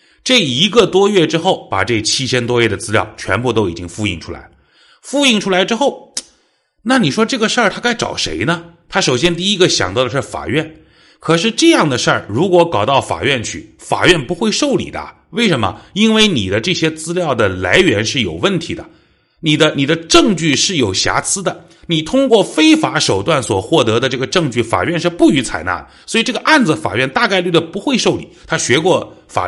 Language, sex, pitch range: Chinese, male, 120-185 Hz